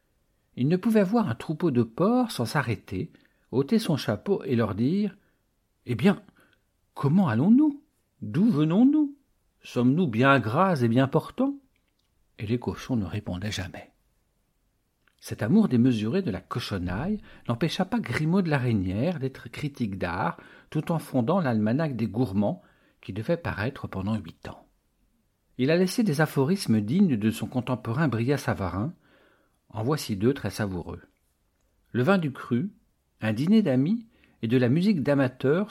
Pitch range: 110-180 Hz